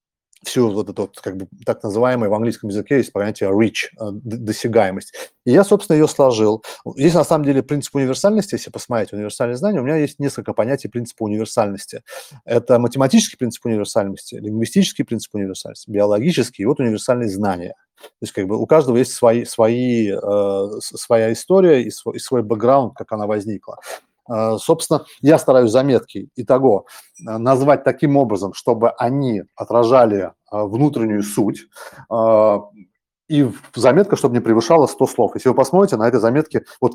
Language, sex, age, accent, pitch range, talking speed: Russian, male, 30-49, native, 110-135 Hz, 155 wpm